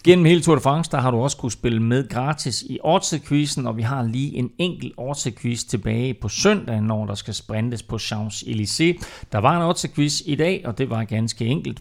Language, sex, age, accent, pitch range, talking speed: Danish, male, 40-59, native, 105-140 Hz, 220 wpm